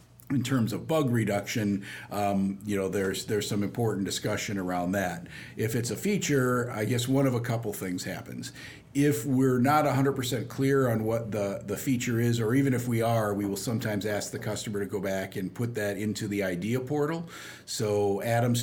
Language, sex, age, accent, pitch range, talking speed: English, male, 50-69, American, 100-115 Hz, 195 wpm